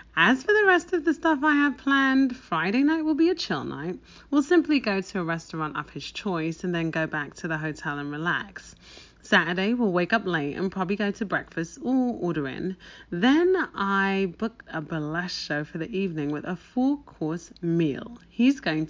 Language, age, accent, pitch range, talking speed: English, 30-49, British, 165-235 Hz, 205 wpm